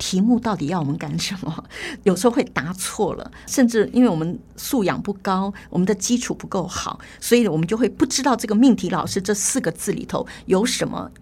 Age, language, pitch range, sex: 50-69, Chinese, 185-255 Hz, female